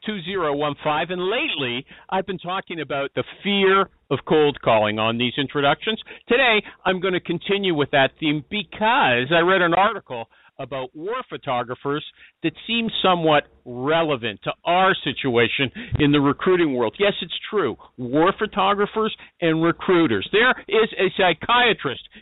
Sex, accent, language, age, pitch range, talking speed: male, American, English, 50-69, 140-200 Hz, 145 wpm